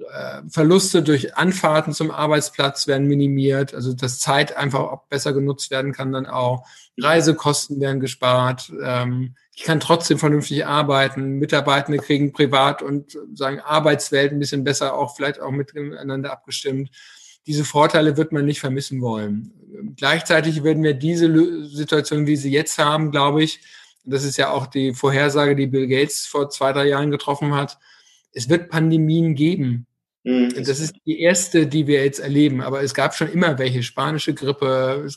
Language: German